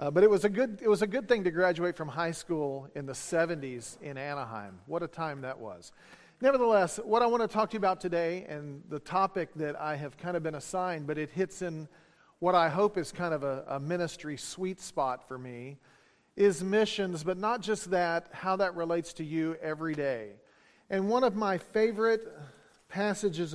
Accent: American